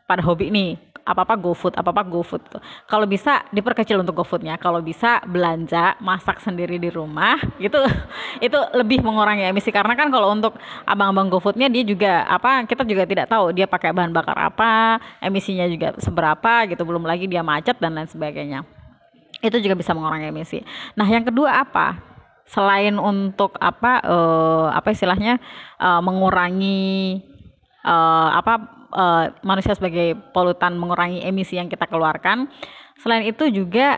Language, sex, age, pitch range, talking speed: Indonesian, female, 20-39, 175-215 Hz, 160 wpm